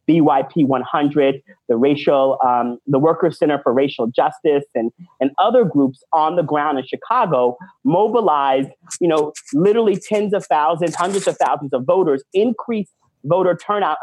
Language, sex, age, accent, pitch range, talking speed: English, male, 40-59, American, 135-175 Hz, 150 wpm